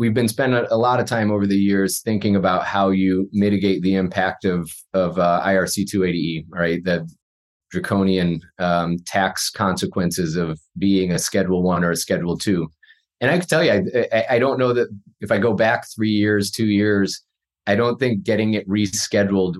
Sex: male